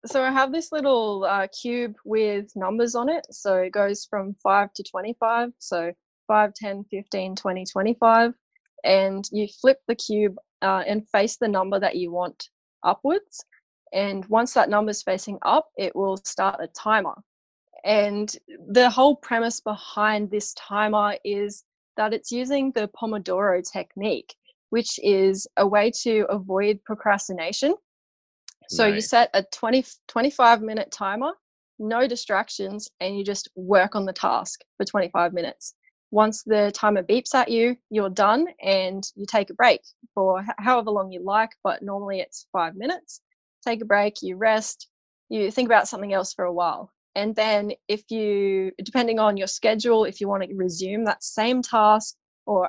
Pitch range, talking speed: 195-235 Hz, 165 wpm